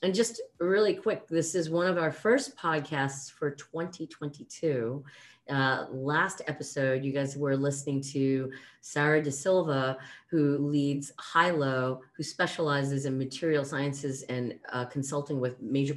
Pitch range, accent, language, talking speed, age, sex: 125-160 Hz, American, English, 140 wpm, 40-59, female